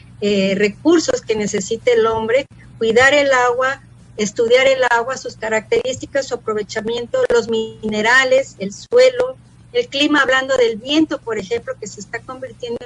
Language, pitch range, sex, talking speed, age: Spanish, 225-295 Hz, female, 145 wpm, 40-59